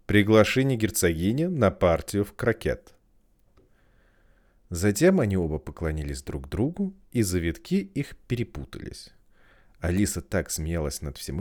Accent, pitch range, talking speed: native, 80-125 Hz, 110 wpm